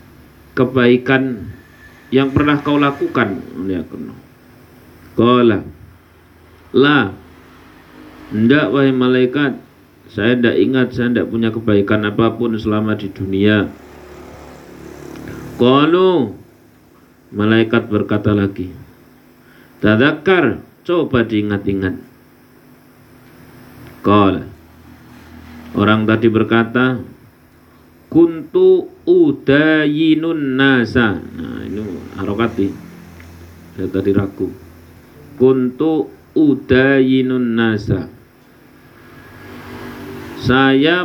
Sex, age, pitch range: male, 50-69, 100-140 Hz